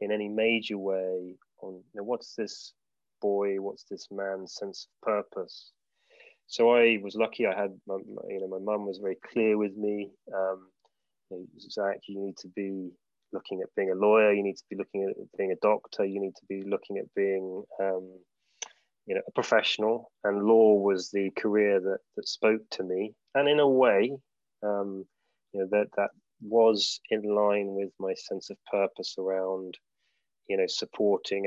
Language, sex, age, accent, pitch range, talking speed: English, male, 20-39, British, 95-110 Hz, 185 wpm